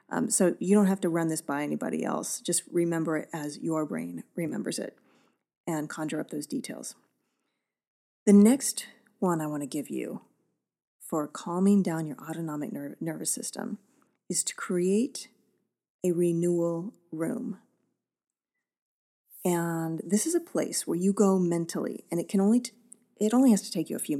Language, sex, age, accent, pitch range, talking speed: English, female, 30-49, American, 170-230 Hz, 160 wpm